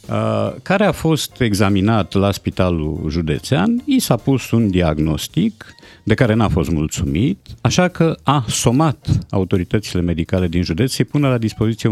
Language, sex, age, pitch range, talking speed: Romanian, male, 50-69, 100-140 Hz, 145 wpm